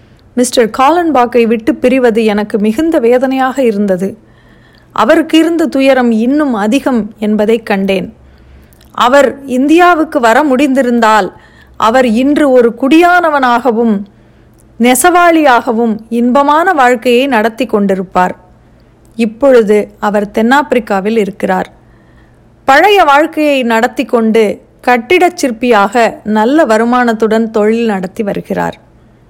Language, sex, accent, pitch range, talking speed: Tamil, female, native, 220-275 Hz, 90 wpm